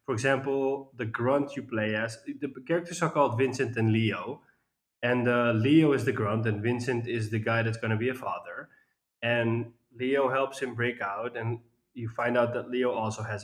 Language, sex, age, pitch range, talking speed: English, male, 20-39, 110-125 Hz, 195 wpm